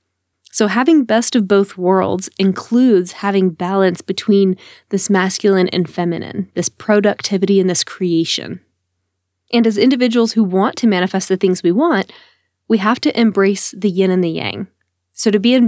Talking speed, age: 165 wpm, 20-39